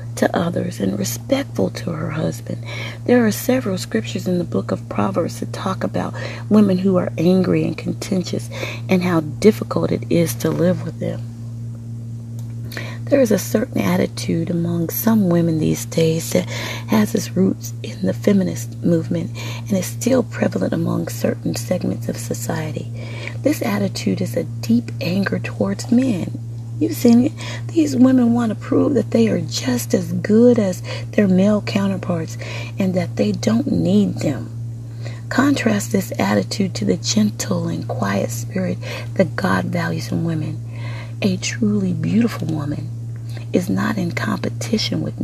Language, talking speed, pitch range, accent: English, 155 wpm, 115-145 Hz, American